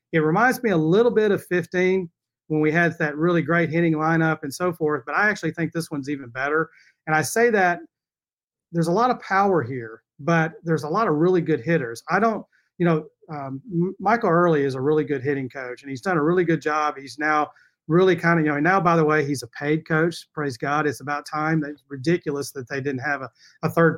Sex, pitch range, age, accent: male, 150-185 Hz, 40-59, American